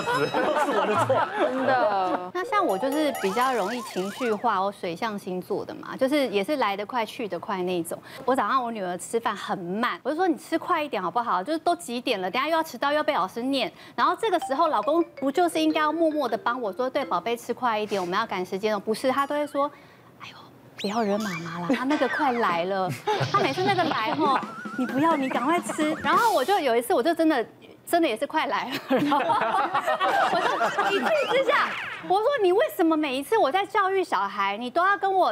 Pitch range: 220-320 Hz